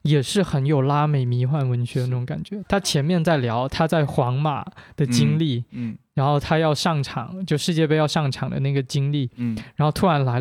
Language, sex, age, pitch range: Chinese, male, 20-39, 135-170 Hz